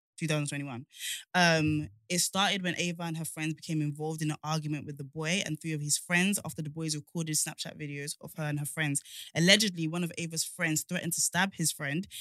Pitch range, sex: 145-170 Hz, female